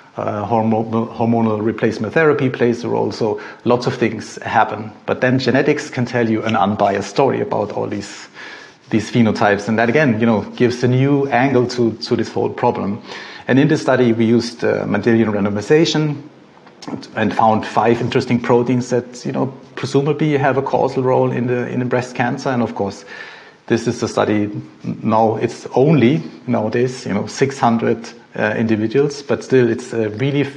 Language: English